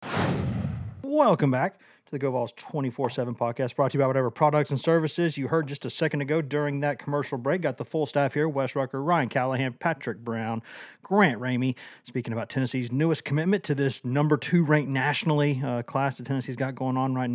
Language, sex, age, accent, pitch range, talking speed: English, male, 30-49, American, 120-140 Hz, 200 wpm